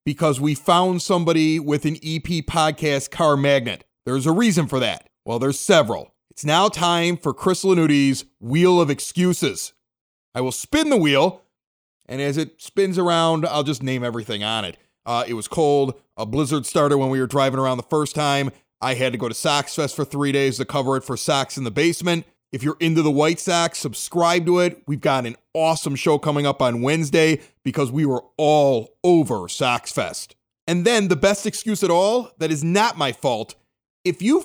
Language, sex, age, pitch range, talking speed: English, male, 30-49, 140-185 Hz, 195 wpm